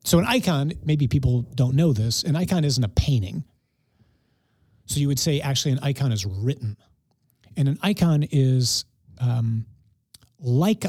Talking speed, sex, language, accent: 155 wpm, male, English, American